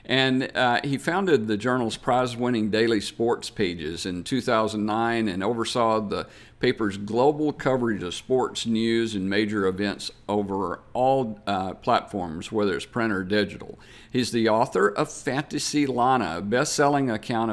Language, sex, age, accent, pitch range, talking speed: English, male, 50-69, American, 105-130 Hz, 145 wpm